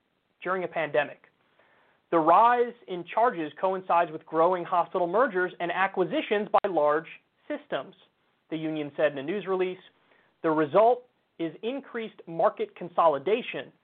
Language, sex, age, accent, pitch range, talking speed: English, male, 30-49, American, 160-230 Hz, 130 wpm